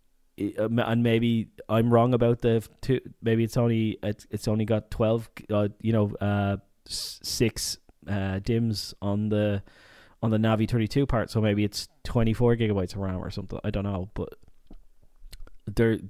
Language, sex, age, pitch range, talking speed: English, male, 20-39, 100-120 Hz, 160 wpm